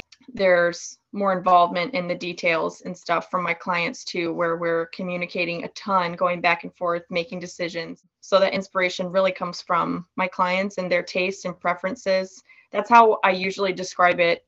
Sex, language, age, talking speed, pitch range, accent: female, English, 20-39, 175 wpm, 180-210 Hz, American